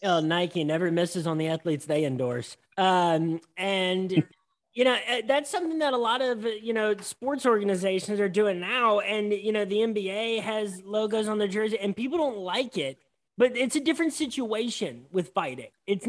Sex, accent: male, American